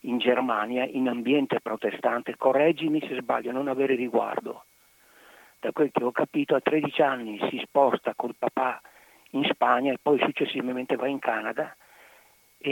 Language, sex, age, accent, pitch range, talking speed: Italian, male, 50-69, native, 120-165 Hz, 150 wpm